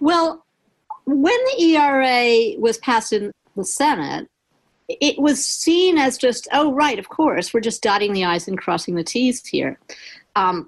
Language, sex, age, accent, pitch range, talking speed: English, female, 50-69, American, 185-250 Hz, 165 wpm